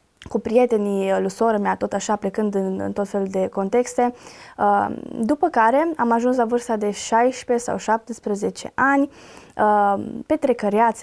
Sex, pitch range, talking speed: female, 210-250 Hz, 150 wpm